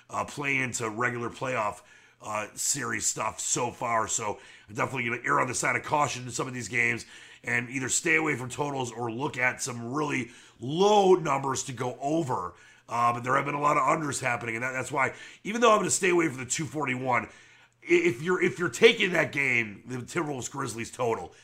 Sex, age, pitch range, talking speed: male, 30-49, 125-165 Hz, 215 wpm